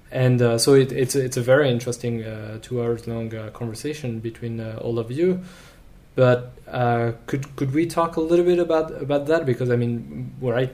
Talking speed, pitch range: 200 wpm, 115-125 Hz